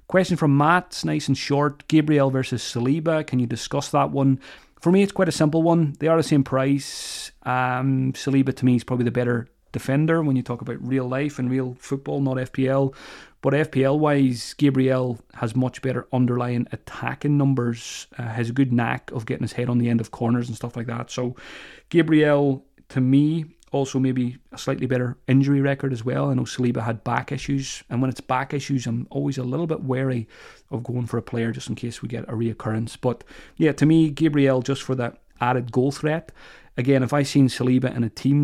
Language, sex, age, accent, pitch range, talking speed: English, male, 30-49, British, 120-140 Hz, 210 wpm